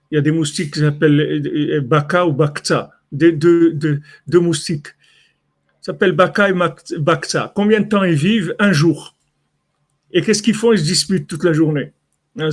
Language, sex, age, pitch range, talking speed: French, male, 50-69, 150-185 Hz, 180 wpm